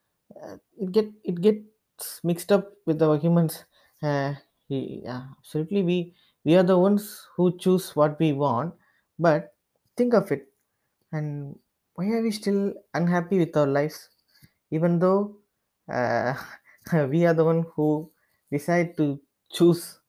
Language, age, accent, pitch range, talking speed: English, 20-39, Indian, 145-190 Hz, 145 wpm